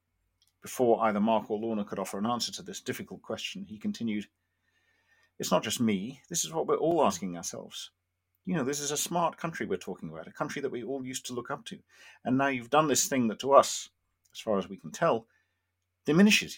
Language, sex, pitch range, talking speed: English, male, 90-135 Hz, 225 wpm